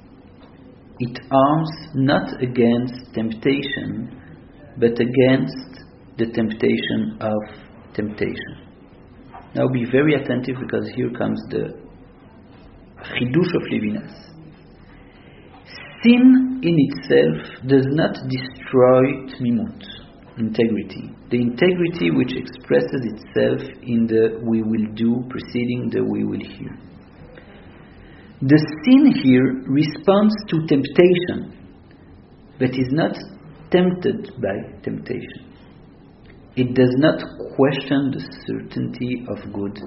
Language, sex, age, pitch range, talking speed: English, male, 50-69, 110-140 Hz, 100 wpm